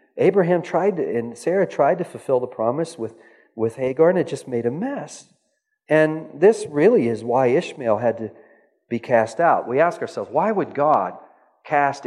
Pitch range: 125-205 Hz